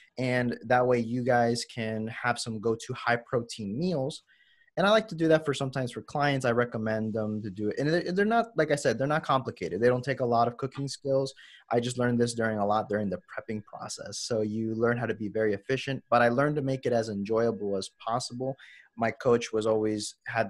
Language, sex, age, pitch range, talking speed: English, male, 20-39, 110-135 Hz, 230 wpm